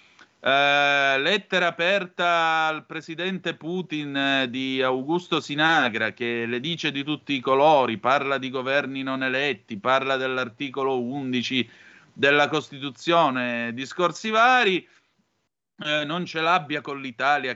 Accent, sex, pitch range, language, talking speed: native, male, 130-160 Hz, Italian, 110 wpm